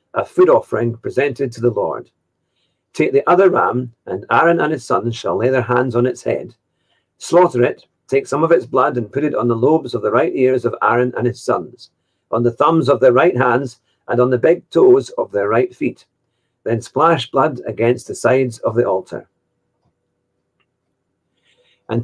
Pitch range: 120-165 Hz